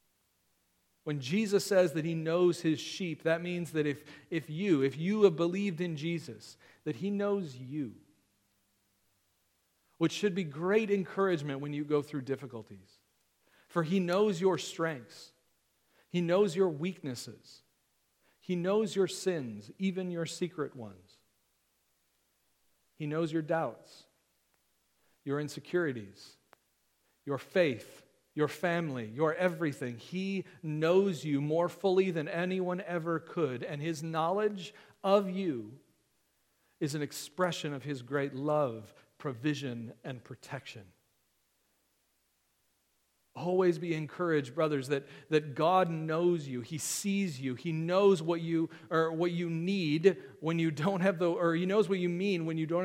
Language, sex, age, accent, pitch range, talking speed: English, male, 40-59, American, 140-180 Hz, 135 wpm